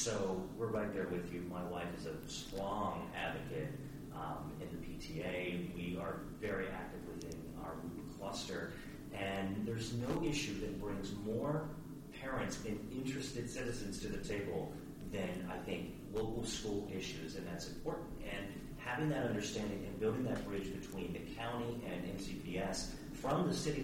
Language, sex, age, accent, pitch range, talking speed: English, male, 40-59, American, 90-120 Hz, 155 wpm